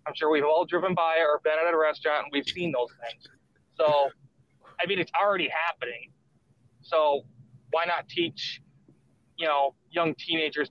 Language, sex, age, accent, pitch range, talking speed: English, male, 20-39, American, 140-165 Hz, 170 wpm